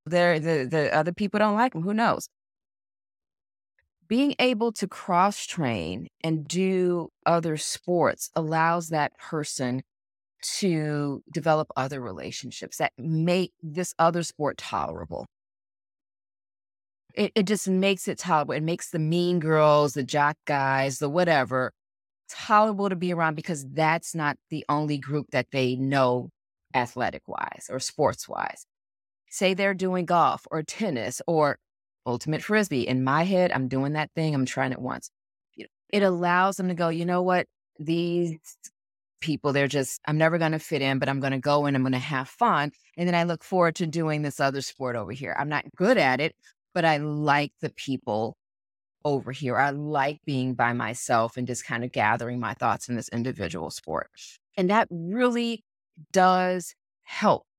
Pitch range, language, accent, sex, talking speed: 130-175 Hz, English, American, female, 165 wpm